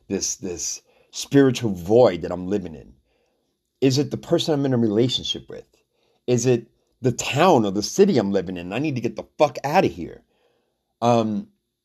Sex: male